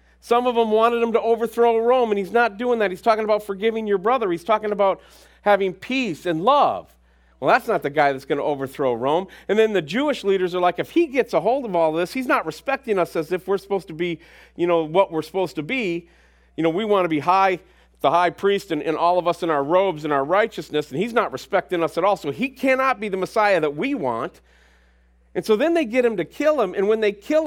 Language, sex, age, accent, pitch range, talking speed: English, male, 40-59, American, 160-230 Hz, 260 wpm